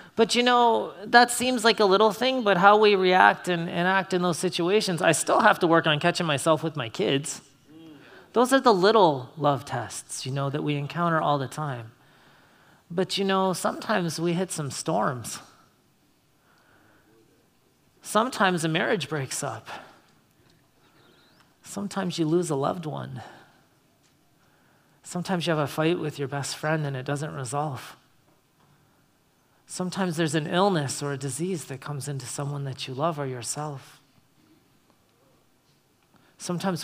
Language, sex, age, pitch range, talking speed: English, male, 30-49, 145-200 Hz, 150 wpm